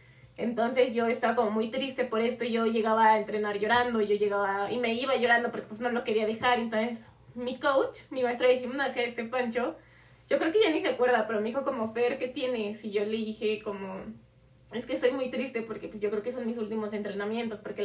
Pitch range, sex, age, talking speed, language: 210-245 Hz, female, 20-39, 230 wpm, Spanish